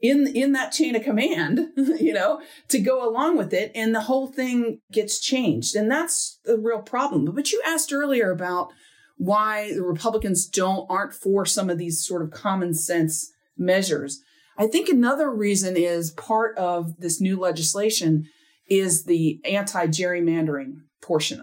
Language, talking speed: English, 160 wpm